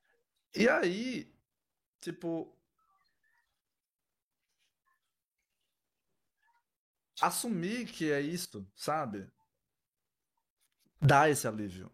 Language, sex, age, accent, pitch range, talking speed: Portuguese, male, 20-39, Brazilian, 140-185 Hz, 55 wpm